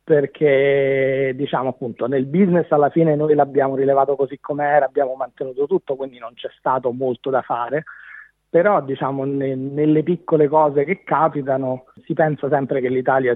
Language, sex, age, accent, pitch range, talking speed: Italian, male, 30-49, native, 130-150 Hz, 155 wpm